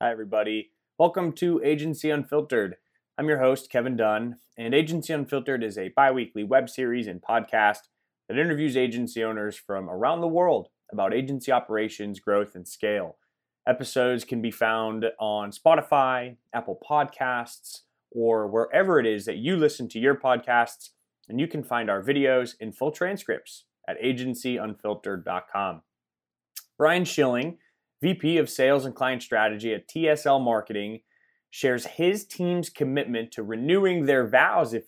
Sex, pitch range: male, 115-150 Hz